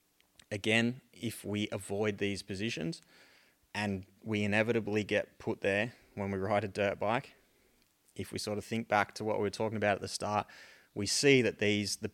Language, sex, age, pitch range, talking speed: English, male, 20-39, 95-115 Hz, 190 wpm